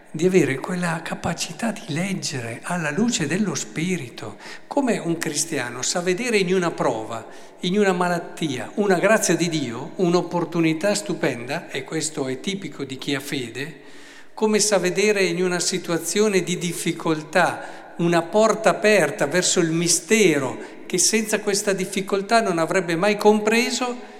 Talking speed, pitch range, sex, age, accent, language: 140 wpm, 140-195 Hz, male, 50-69, native, Italian